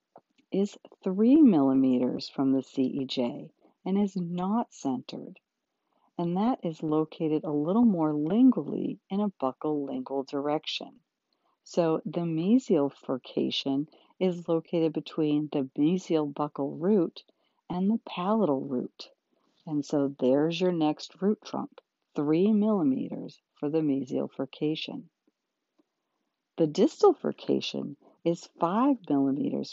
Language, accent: English, American